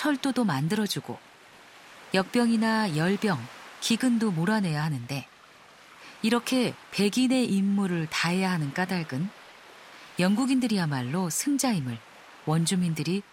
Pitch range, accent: 165-215 Hz, native